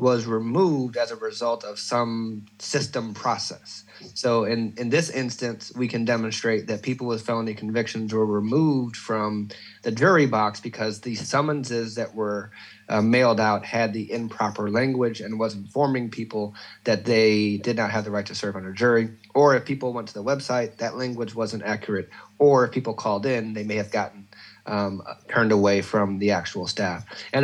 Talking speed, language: 185 wpm, English